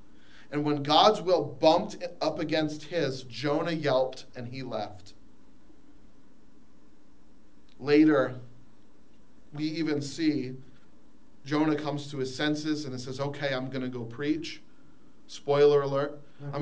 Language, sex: English, male